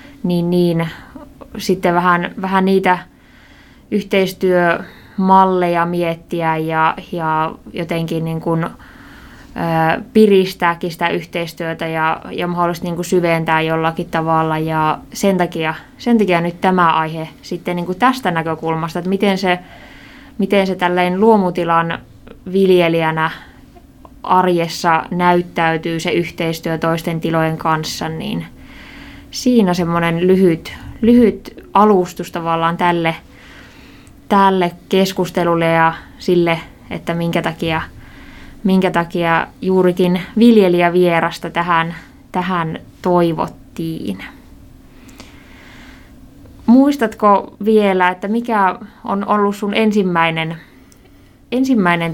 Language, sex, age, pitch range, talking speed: Finnish, female, 20-39, 165-190 Hz, 95 wpm